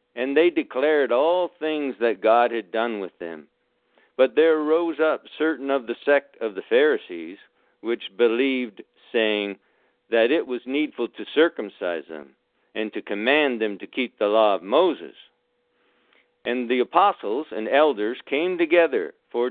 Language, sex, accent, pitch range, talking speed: English, male, American, 120-180 Hz, 155 wpm